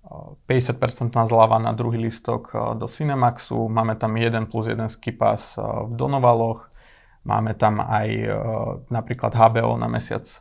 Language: Slovak